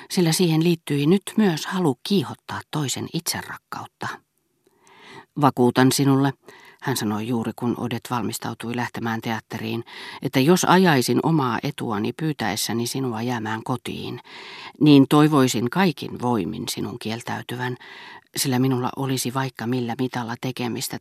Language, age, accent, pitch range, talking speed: Finnish, 40-59, native, 120-150 Hz, 115 wpm